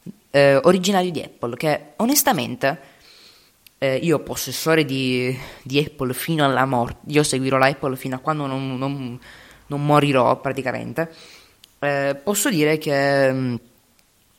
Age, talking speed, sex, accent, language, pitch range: 20-39, 135 wpm, female, native, Italian, 130-155 Hz